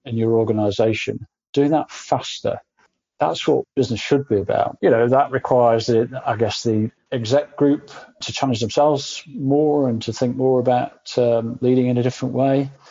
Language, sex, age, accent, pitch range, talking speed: English, male, 40-59, British, 115-135 Hz, 165 wpm